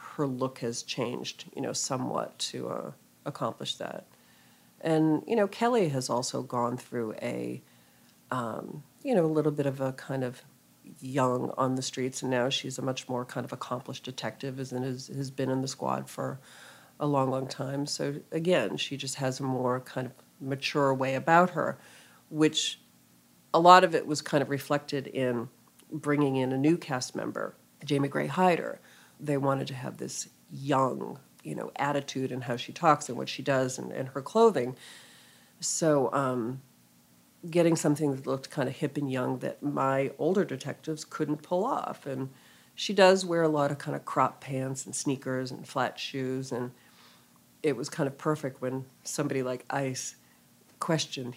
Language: English